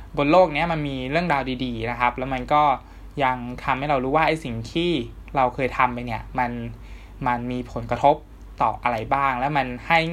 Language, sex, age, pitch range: Thai, male, 20-39, 120-150 Hz